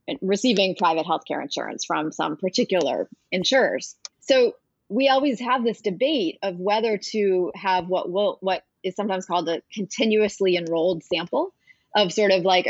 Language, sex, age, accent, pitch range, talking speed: English, female, 30-49, American, 175-235 Hz, 155 wpm